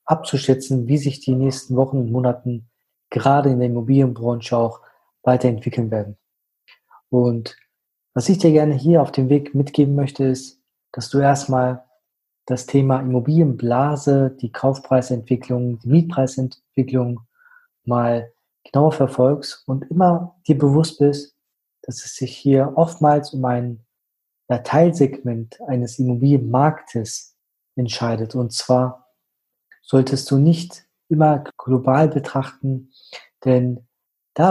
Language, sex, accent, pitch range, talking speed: German, male, German, 125-145 Hz, 115 wpm